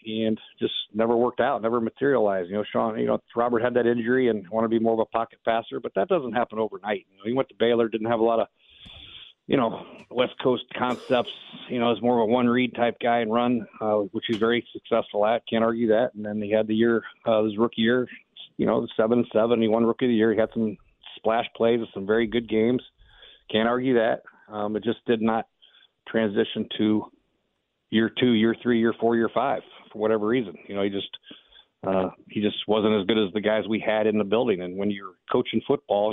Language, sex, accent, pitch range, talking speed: English, male, American, 105-115 Hz, 235 wpm